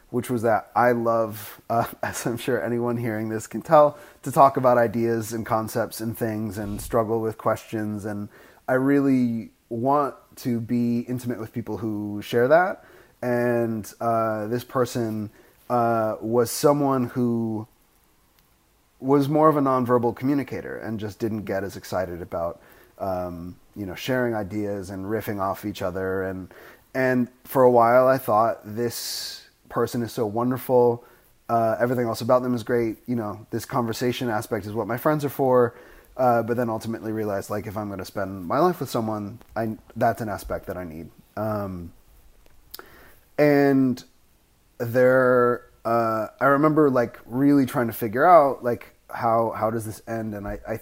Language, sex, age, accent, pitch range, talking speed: English, male, 30-49, American, 110-125 Hz, 170 wpm